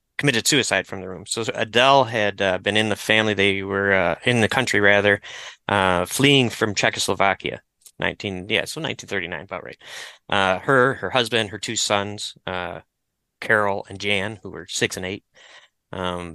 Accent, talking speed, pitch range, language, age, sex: American, 175 wpm, 95-110 Hz, English, 30-49, male